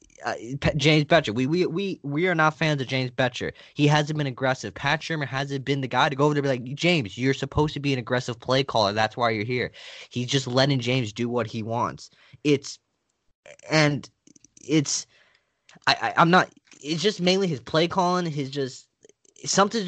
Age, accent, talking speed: 20-39, American, 200 wpm